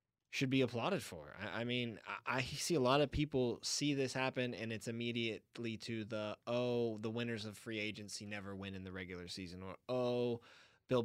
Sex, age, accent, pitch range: male, 20-39, American, 100-120 Hz